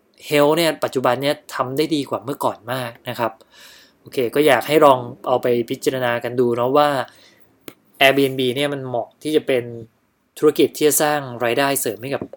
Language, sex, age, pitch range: Thai, male, 20-39, 120-145 Hz